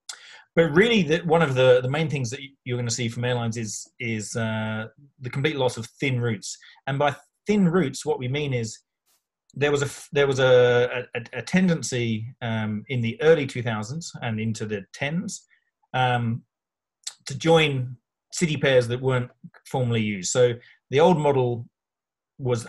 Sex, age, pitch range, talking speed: male, 30-49, 120-145 Hz, 160 wpm